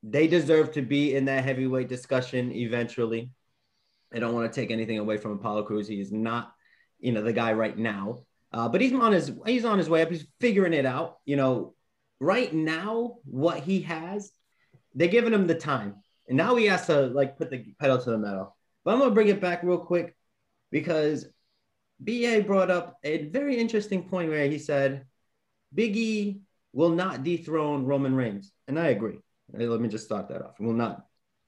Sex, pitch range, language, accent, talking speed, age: male, 125-180 Hz, English, American, 195 wpm, 30-49